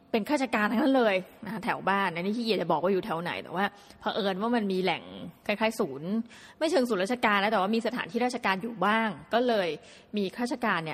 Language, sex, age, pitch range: Thai, female, 20-39, 195-245 Hz